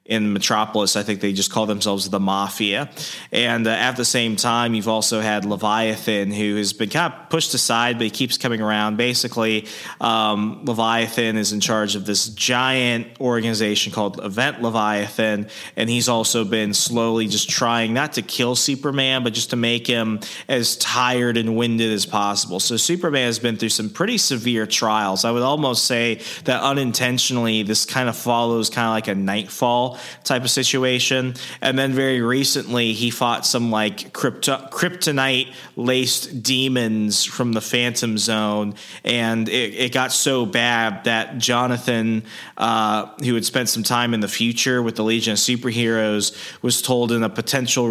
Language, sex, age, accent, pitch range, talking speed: English, male, 20-39, American, 110-125 Hz, 170 wpm